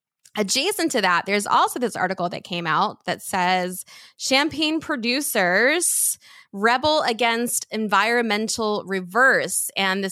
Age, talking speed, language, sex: 20-39, 120 wpm, English, female